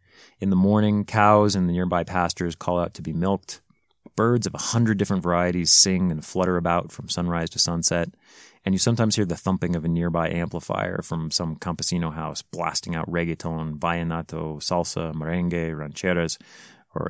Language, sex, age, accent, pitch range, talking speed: English, male, 30-49, American, 85-100 Hz, 170 wpm